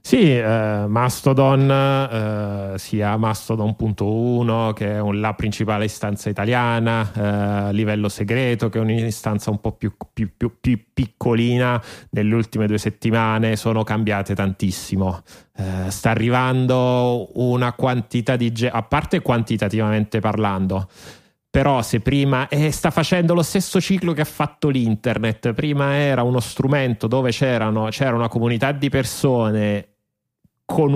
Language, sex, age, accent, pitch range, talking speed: Italian, male, 30-49, native, 110-135 Hz, 130 wpm